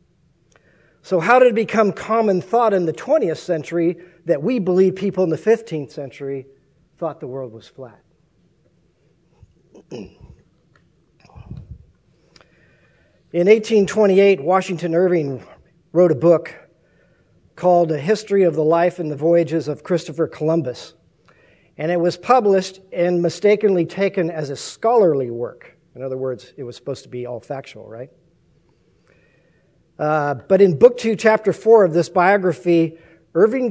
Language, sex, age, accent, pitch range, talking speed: English, male, 50-69, American, 160-195 Hz, 135 wpm